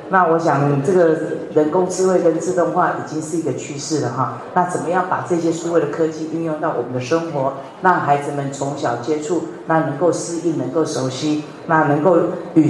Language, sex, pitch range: Chinese, female, 145-175 Hz